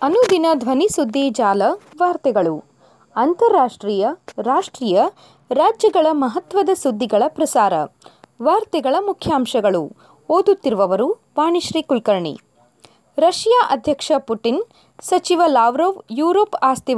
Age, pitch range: 20-39, 245-355 Hz